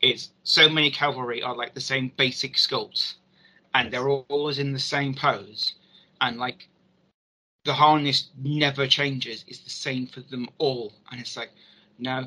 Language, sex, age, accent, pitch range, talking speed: English, male, 20-39, British, 125-140 Hz, 165 wpm